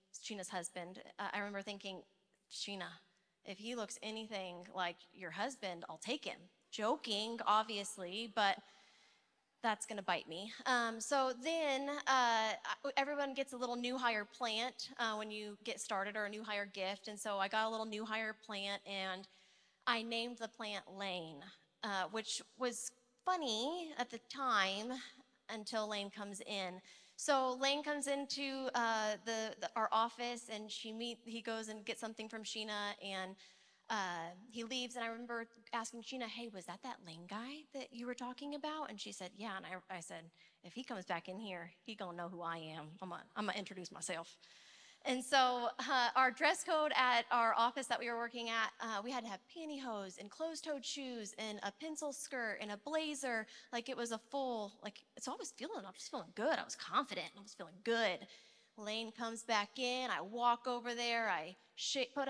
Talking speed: 195 wpm